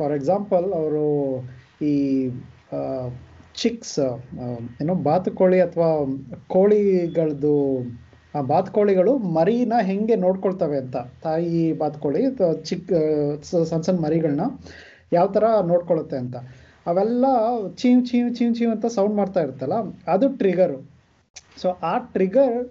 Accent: native